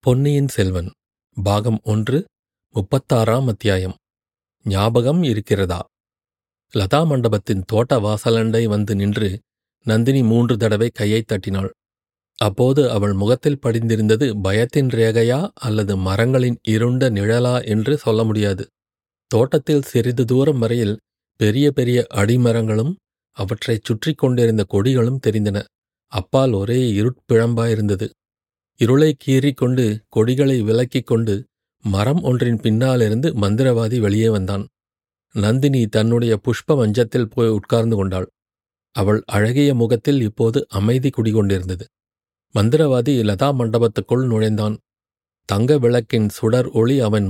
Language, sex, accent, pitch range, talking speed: Tamil, male, native, 105-125 Hz, 100 wpm